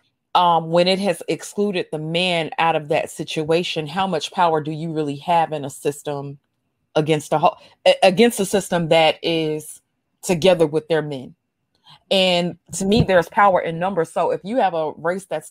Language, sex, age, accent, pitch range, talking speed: English, female, 30-49, American, 155-185 Hz, 175 wpm